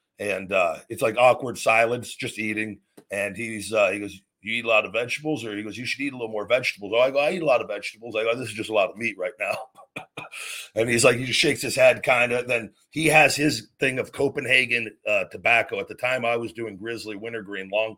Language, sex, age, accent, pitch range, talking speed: English, male, 50-69, American, 110-135 Hz, 255 wpm